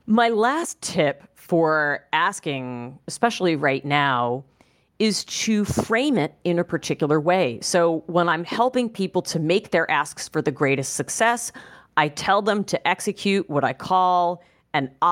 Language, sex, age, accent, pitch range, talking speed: English, female, 40-59, American, 145-190 Hz, 150 wpm